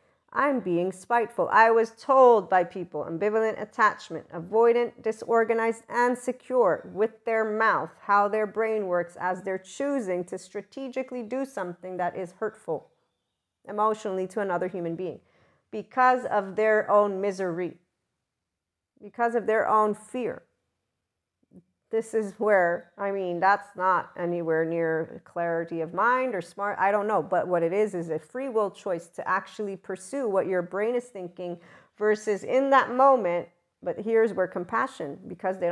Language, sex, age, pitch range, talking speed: English, female, 40-59, 180-230 Hz, 150 wpm